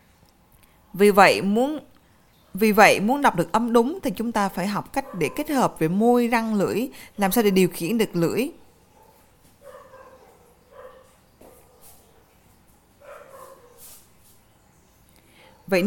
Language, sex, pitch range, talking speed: Vietnamese, female, 175-245 Hz, 115 wpm